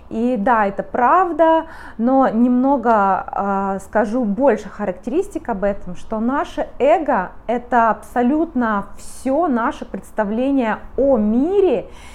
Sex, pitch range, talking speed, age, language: female, 205-260 Hz, 110 wpm, 20-39, Russian